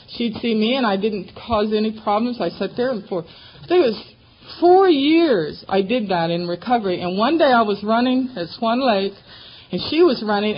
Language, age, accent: English, 50-69, American